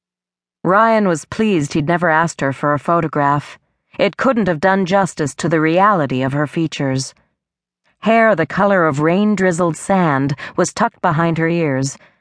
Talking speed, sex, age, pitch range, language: 155 wpm, female, 40-59, 140-195 Hz, English